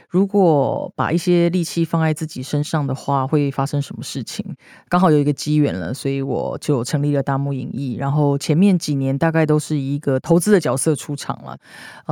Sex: female